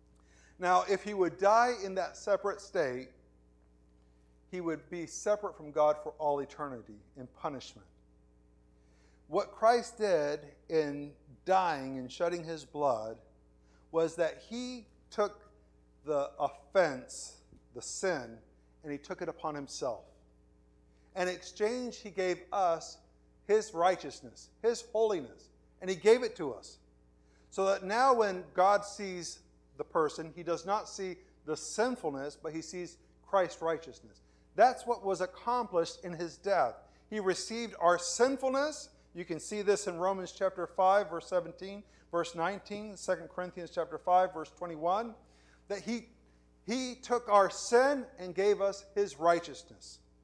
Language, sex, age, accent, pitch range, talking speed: English, male, 50-69, American, 135-205 Hz, 140 wpm